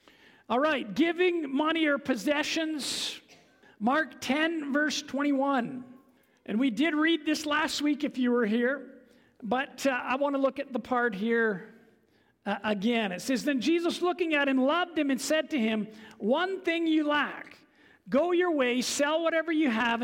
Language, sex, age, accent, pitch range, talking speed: English, male, 50-69, American, 230-300 Hz, 170 wpm